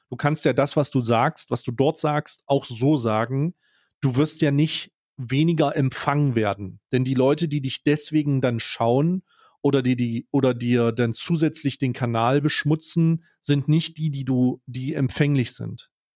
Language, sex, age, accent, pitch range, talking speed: German, male, 30-49, German, 130-155 Hz, 175 wpm